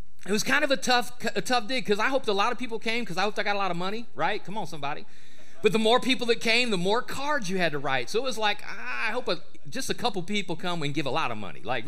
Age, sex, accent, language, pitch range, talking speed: 40-59, male, American, English, 200-250 Hz, 315 wpm